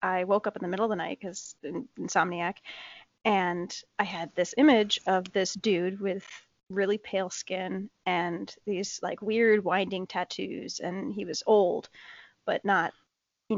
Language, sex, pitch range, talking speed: English, female, 185-235 Hz, 160 wpm